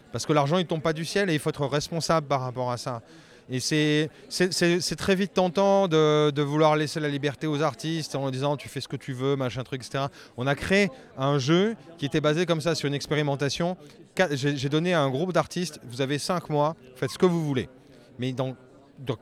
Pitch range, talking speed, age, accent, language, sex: 135-170 Hz, 240 wpm, 30-49, French, French, male